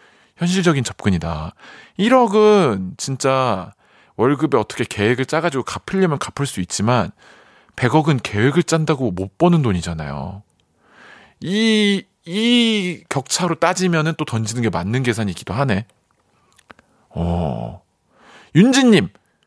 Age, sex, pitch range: 40-59, male, 115-190 Hz